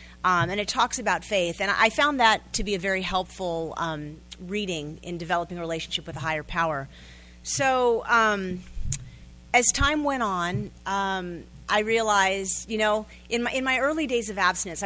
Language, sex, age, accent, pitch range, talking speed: English, female, 40-59, American, 180-230 Hz, 180 wpm